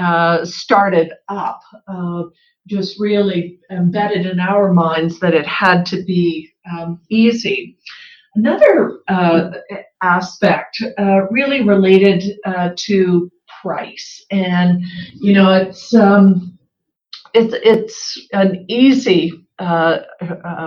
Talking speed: 105 wpm